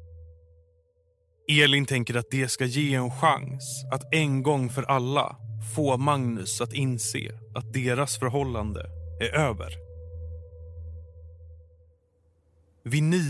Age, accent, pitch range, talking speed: 30-49, native, 80-135 Hz, 105 wpm